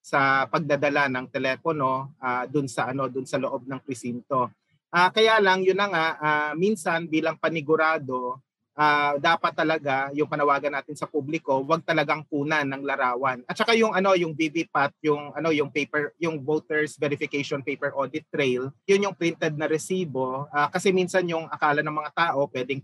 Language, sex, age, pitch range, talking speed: Filipino, male, 30-49, 140-170 Hz, 175 wpm